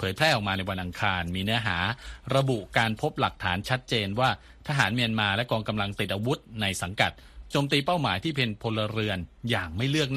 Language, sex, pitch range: Thai, male, 90-120 Hz